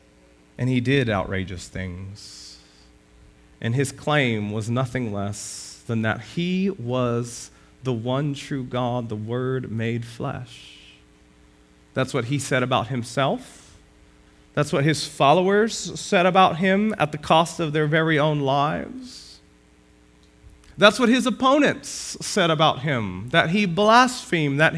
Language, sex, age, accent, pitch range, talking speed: English, male, 30-49, American, 90-155 Hz, 135 wpm